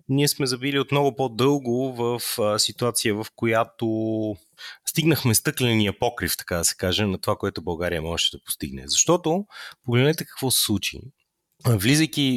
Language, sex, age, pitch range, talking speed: Bulgarian, male, 30-49, 95-130 Hz, 140 wpm